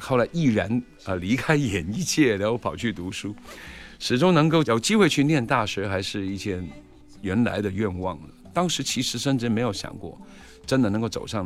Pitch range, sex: 90-125 Hz, male